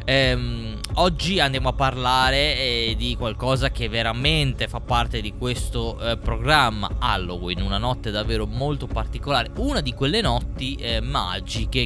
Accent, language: native, Italian